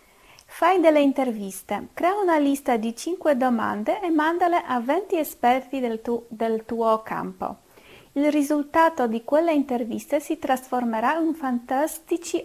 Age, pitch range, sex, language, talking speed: 30-49, 235-300 Hz, female, Italian, 130 wpm